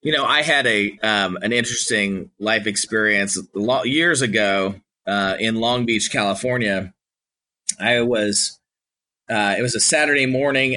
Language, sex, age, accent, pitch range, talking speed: English, male, 30-49, American, 120-145 Hz, 150 wpm